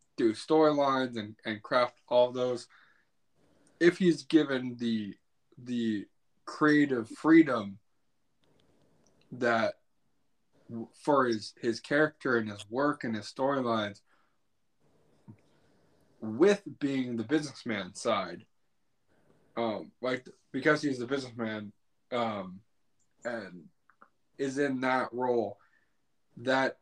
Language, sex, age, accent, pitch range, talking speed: English, male, 20-39, American, 110-145 Hz, 95 wpm